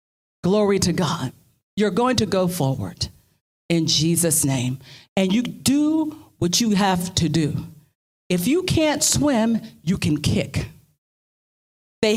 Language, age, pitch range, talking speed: English, 50-69, 155-225 Hz, 135 wpm